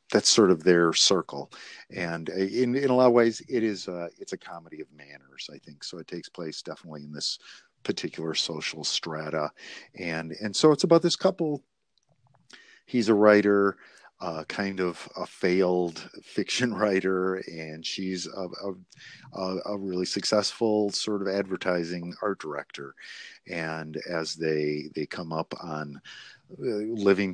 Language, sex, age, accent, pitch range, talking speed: English, male, 50-69, American, 80-105 Hz, 150 wpm